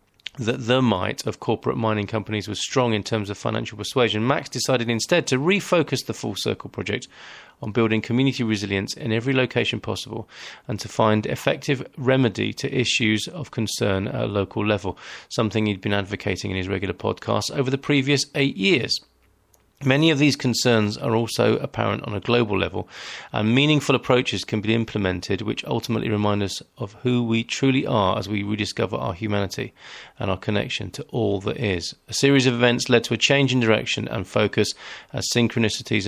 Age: 40-59